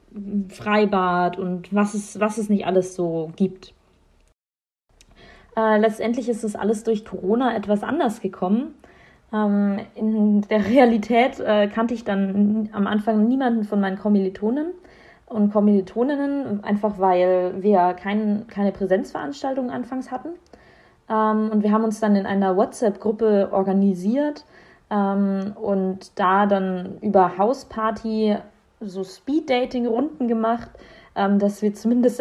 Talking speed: 120 wpm